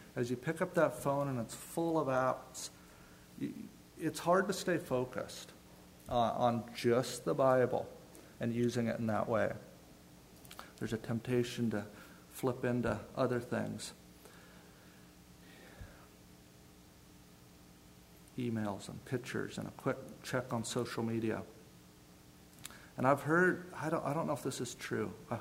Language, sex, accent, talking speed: English, male, American, 135 wpm